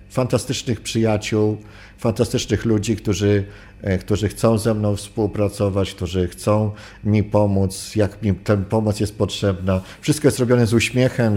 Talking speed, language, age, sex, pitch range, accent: 130 wpm, Polish, 50-69, male, 95-120 Hz, native